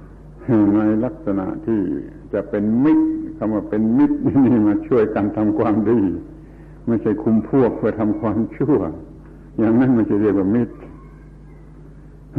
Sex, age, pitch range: male, 70-89, 105-145 Hz